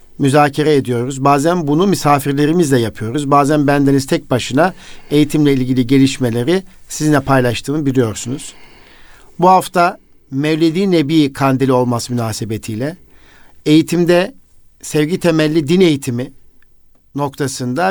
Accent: native